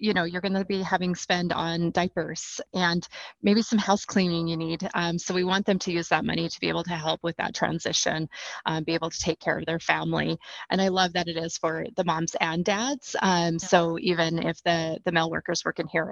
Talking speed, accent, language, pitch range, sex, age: 240 wpm, American, English, 165-185 Hz, female, 30-49